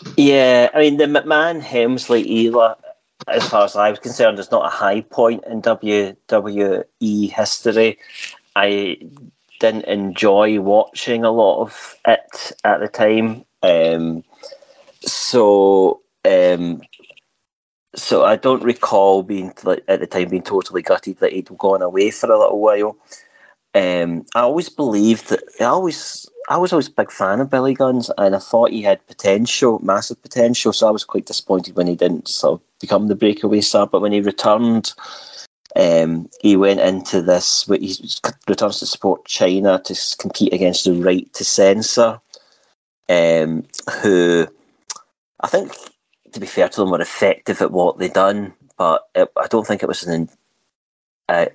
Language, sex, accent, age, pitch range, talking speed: English, male, British, 30-49, 95-120 Hz, 160 wpm